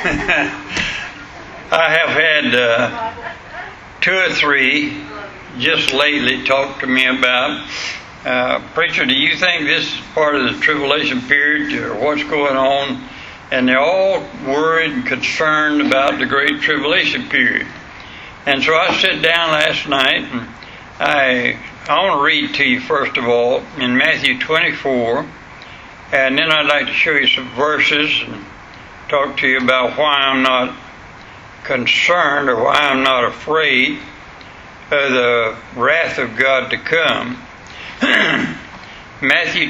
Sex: male